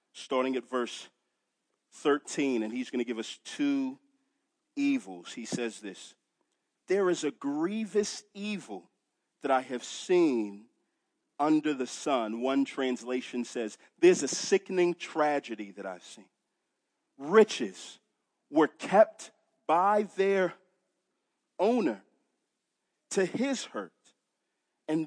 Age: 40-59